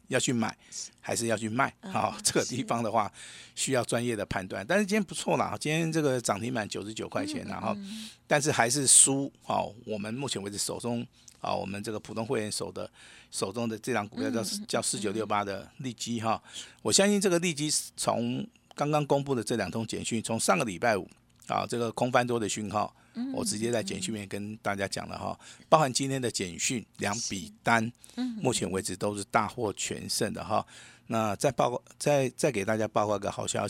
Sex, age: male, 50-69